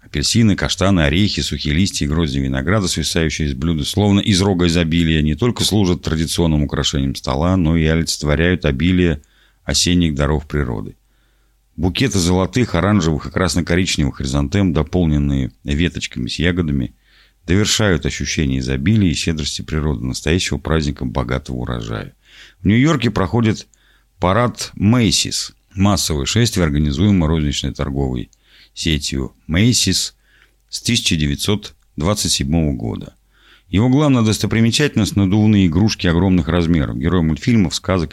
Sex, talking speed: male, 115 wpm